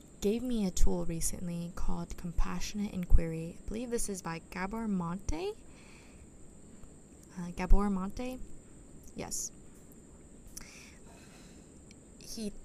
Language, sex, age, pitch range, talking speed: English, female, 20-39, 155-210 Hz, 95 wpm